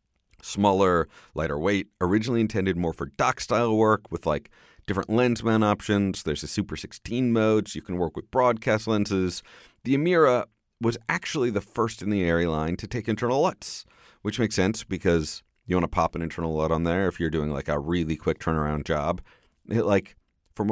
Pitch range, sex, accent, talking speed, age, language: 80-110 Hz, male, American, 195 wpm, 30-49, English